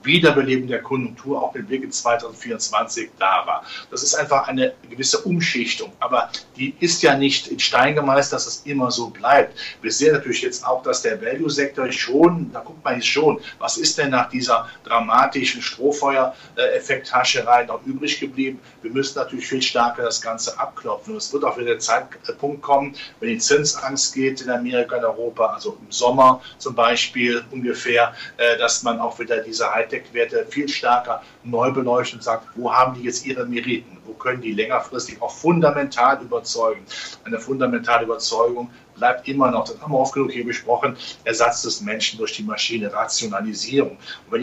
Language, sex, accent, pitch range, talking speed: German, male, German, 120-155 Hz, 175 wpm